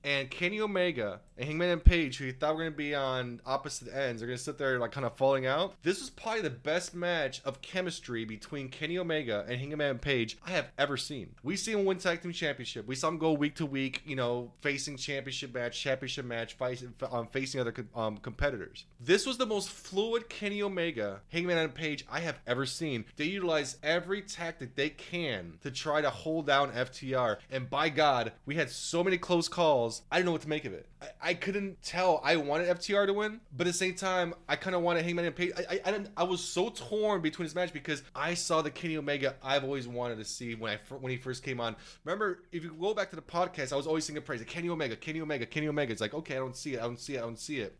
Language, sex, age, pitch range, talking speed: English, male, 20-39, 130-170 Hz, 250 wpm